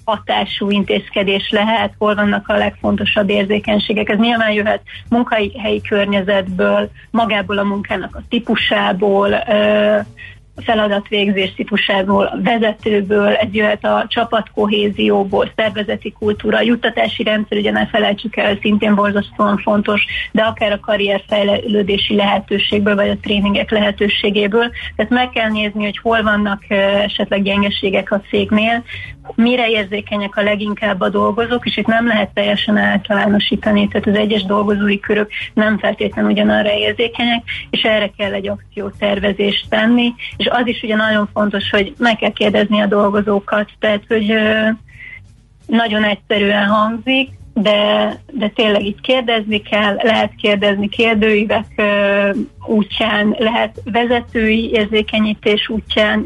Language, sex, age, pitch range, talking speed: Hungarian, female, 30-49, 205-220 Hz, 125 wpm